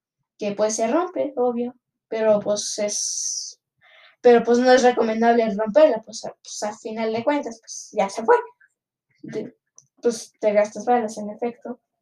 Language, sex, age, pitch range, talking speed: Spanish, female, 10-29, 220-275 Hz, 150 wpm